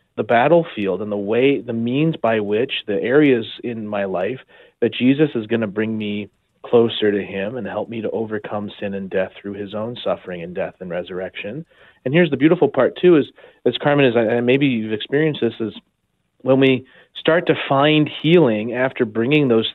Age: 30-49